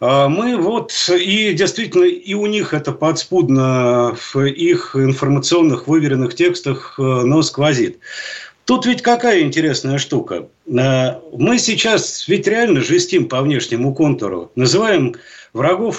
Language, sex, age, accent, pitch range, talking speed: Russian, male, 50-69, native, 135-180 Hz, 115 wpm